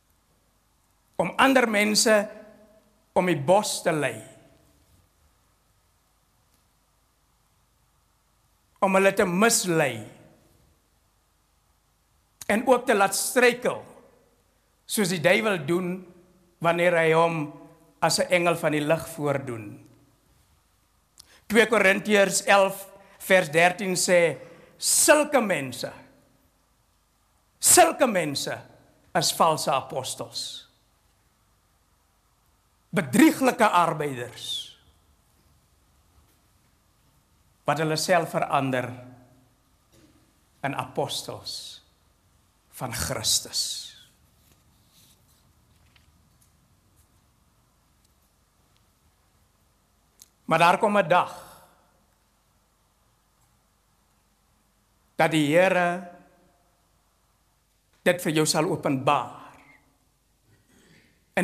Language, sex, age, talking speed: English, male, 60-79, 65 wpm